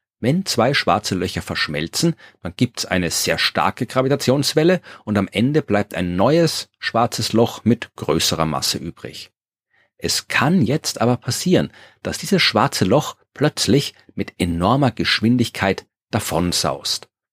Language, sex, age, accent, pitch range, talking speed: German, male, 40-59, German, 100-140 Hz, 130 wpm